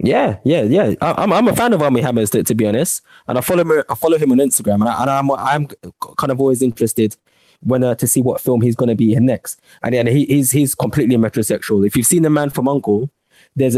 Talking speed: 255 wpm